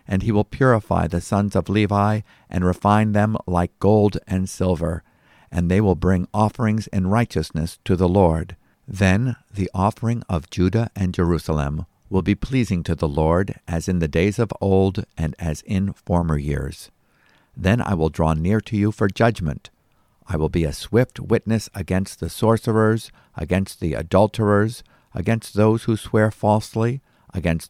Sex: male